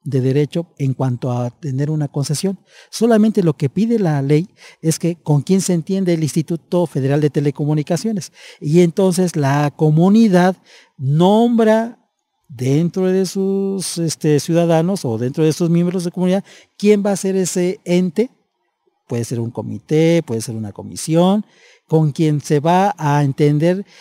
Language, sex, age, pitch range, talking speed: Spanish, male, 50-69, 140-185 Hz, 155 wpm